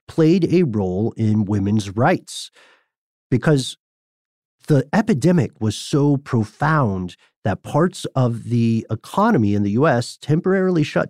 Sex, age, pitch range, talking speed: male, 40-59, 115-155 Hz, 120 wpm